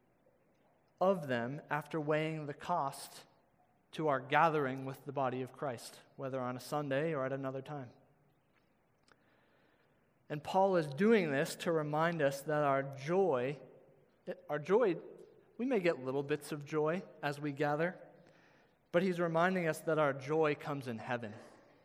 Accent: American